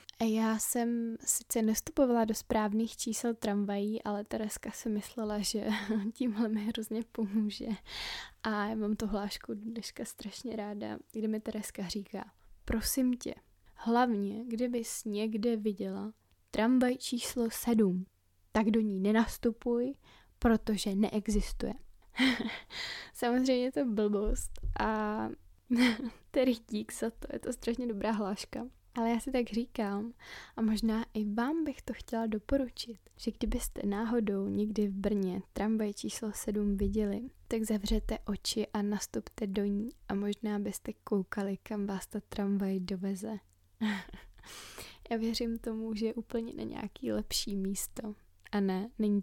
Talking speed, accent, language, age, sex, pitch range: 135 wpm, native, Czech, 10-29, female, 205-235 Hz